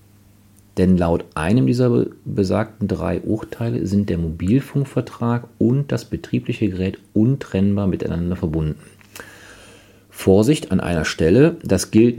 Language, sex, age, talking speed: German, male, 50-69, 115 wpm